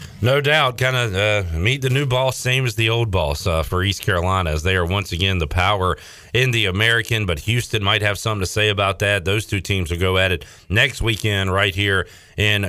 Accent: American